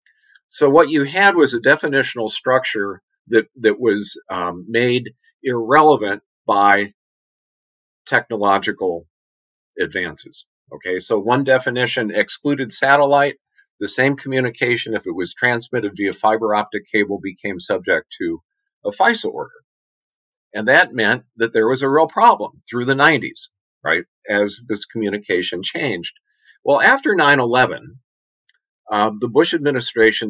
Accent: American